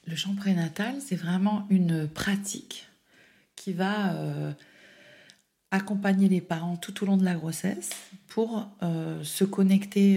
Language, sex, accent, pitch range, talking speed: French, female, French, 165-200 Hz, 135 wpm